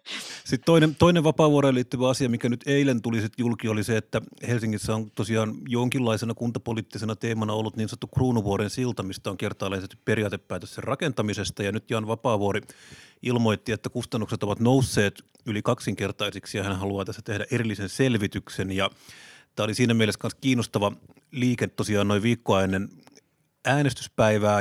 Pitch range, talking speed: 105-125 Hz, 150 wpm